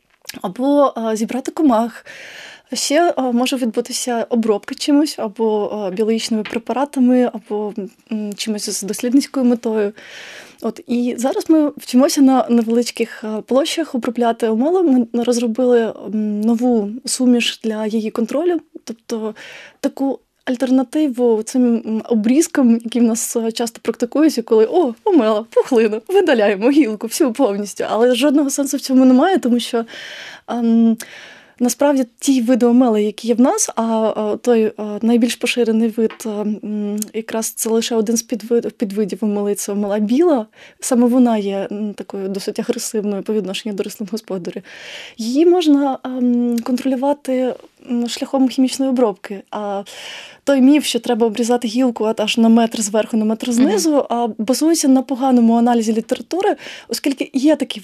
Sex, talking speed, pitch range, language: female, 125 wpm, 220-265 Hz, Ukrainian